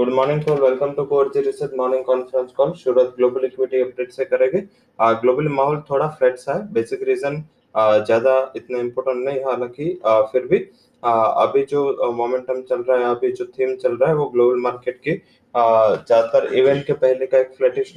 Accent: Indian